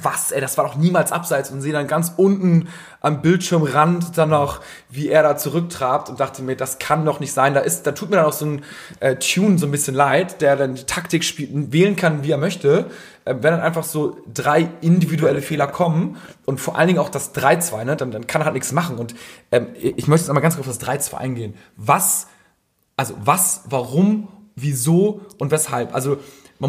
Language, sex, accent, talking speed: German, male, German, 220 wpm